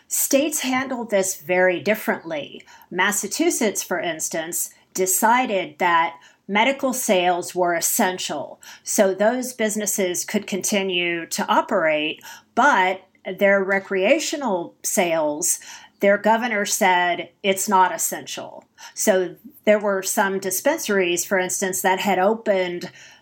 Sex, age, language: female, 40-59, English